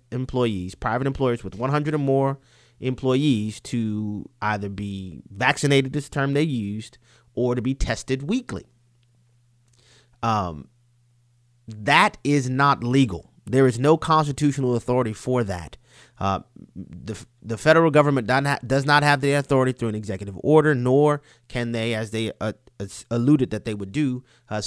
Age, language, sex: 30-49, English, male